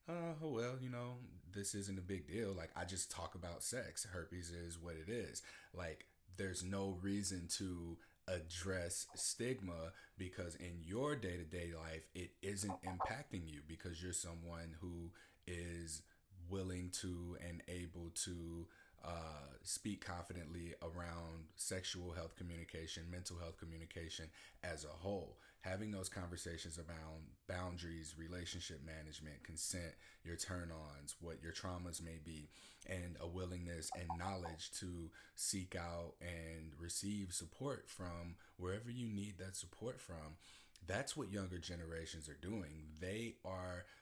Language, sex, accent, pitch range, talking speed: English, male, American, 85-95 Hz, 135 wpm